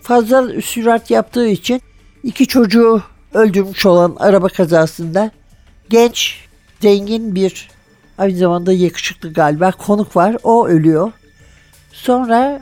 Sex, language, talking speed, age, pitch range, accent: male, Turkish, 105 wpm, 60-79, 175-230 Hz, native